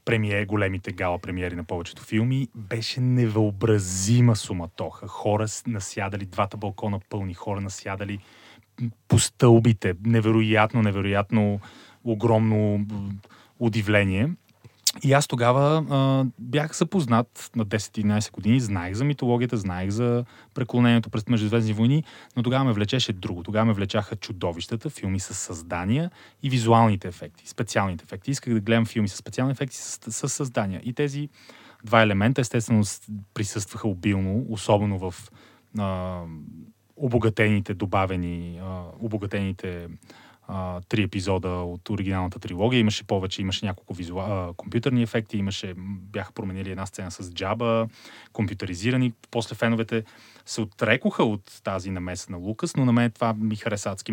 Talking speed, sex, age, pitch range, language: 130 wpm, male, 30-49, 100-120 Hz, Bulgarian